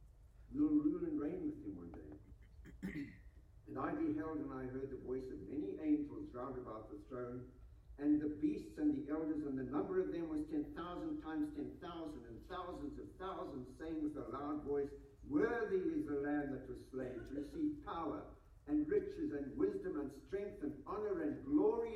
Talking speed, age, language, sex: 190 wpm, 60-79, English, male